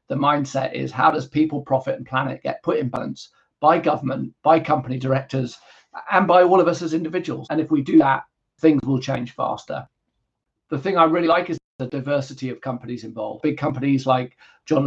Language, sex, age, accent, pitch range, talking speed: English, male, 40-59, British, 130-160 Hz, 200 wpm